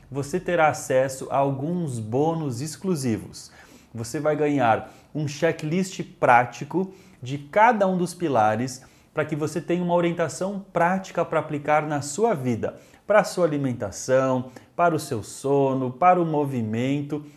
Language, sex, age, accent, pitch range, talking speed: Portuguese, male, 30-49, Brazilian, 135-175 Hz, 140 wpm